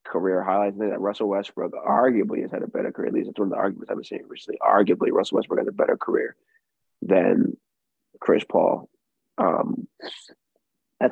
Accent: American